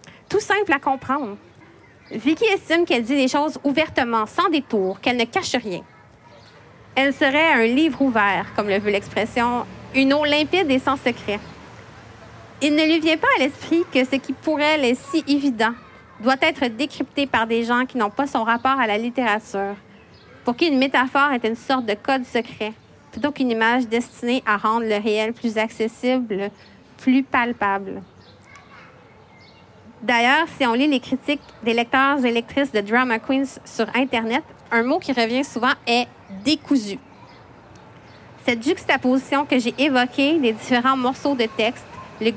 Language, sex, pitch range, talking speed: French, female, 220-275 Hz, 170 wpm